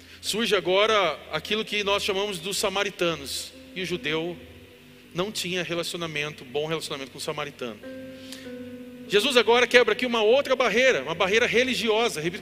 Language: Portuguese